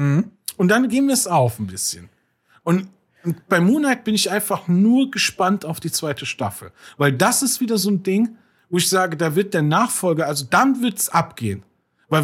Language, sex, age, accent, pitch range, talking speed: German, male, 40-59, German, 135-195 Hz, 195 wpm